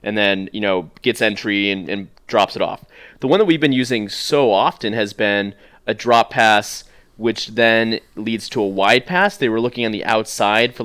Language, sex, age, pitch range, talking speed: English, male, 20-39, 100-125 Hz, 210 wpm